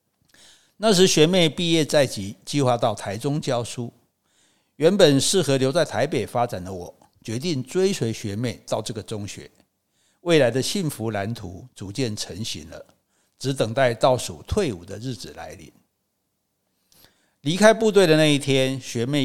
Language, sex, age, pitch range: Chinese, male, 60-79, 115-150 Hz